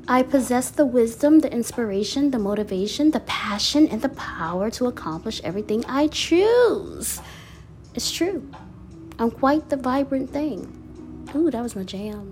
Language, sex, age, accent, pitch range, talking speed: English, female, 20-39, American, 225-300 Hz, 145 wpm